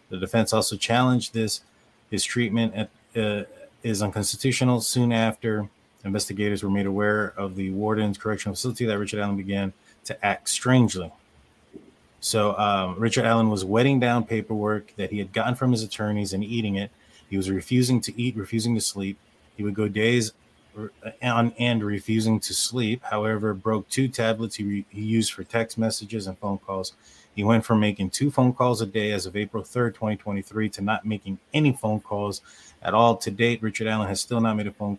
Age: 30-49